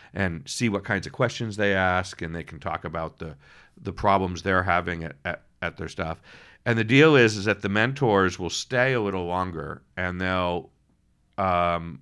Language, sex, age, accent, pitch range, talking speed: English, male, 50-69, American, 85-105 Hz, 195 wpm